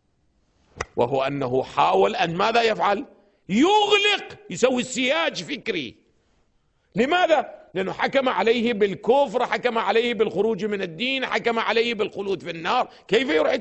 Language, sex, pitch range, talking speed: English, male, 220-270 Hz, 120 wpm